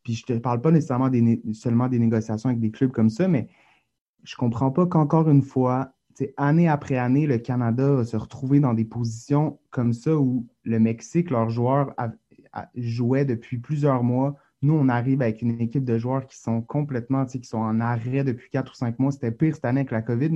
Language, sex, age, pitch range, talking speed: English, male, 30-49, 115-135 Hz, 225 wpm